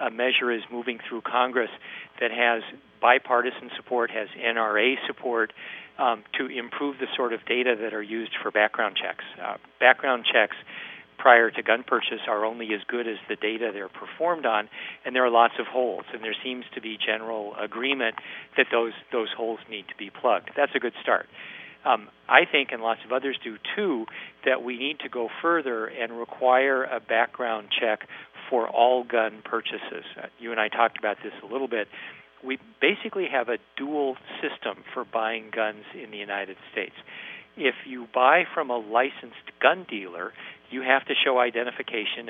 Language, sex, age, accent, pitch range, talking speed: English, male, 50-69, American, 110-130 Hz, 180 wpm